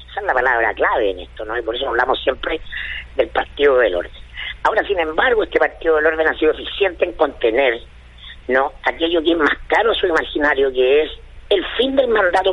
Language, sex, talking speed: Spanish, female, 205 wpm